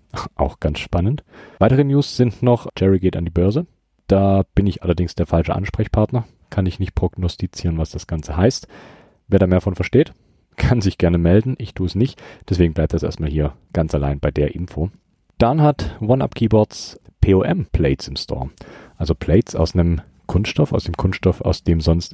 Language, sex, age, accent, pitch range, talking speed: German, male, 40-59, German, 80-100 Hz, 185 wpm